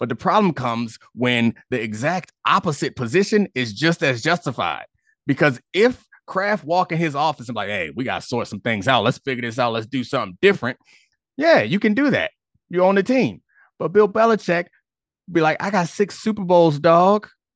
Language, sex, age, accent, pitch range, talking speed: English, male, 30-49, American, 130-190 Hz, 200 wpm